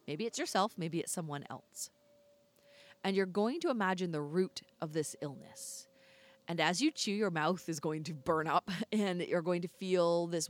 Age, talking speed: 30-49, 195 wpm